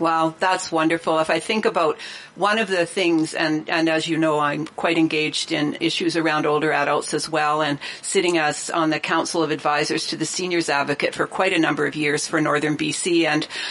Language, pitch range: English, 155-190 Hz